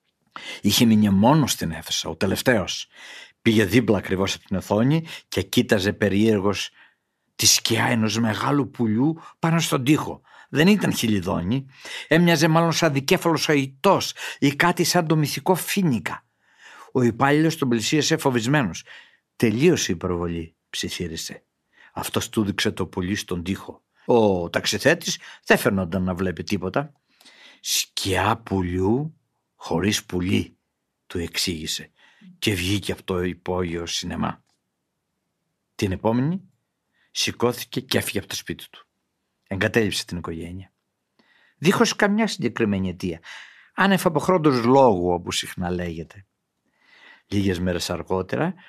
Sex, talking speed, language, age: male, 120 wpm, Greek, 60-79